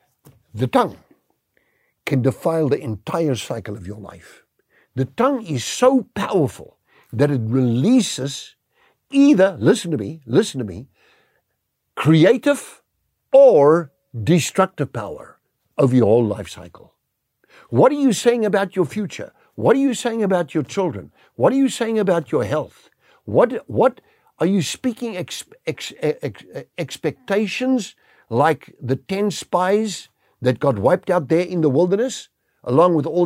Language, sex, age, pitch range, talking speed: English, male, 60-79, 130-210 Hz, 145 wpm